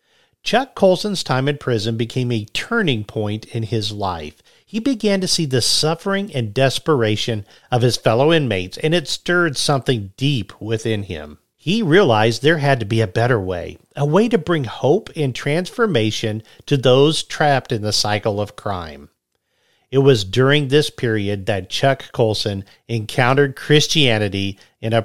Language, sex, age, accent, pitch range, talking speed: English, male, 50-69, American, 110-145 Hz, 160 wpm